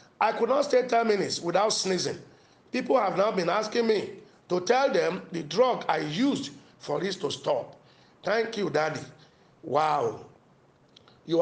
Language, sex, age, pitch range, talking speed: English, male, 50-69, 180-255 Hz, 160 wpm